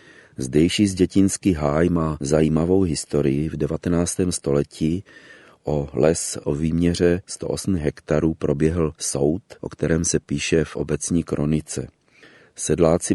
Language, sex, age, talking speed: Czech, male, 40-59, 120 wpm